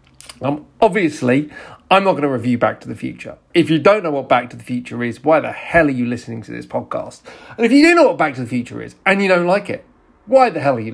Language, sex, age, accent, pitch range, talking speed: English, male, 40-59, British, 130-190 Hz, 280 wpm